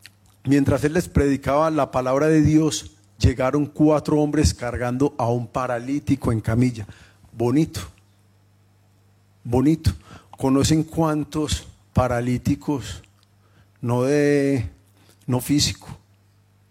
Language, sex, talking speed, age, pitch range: Spanish, male, 95 wpm, 40-59, 100-135 Hz